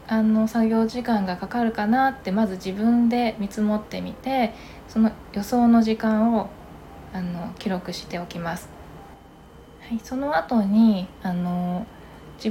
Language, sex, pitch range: Japanese, female, 185-235 Hz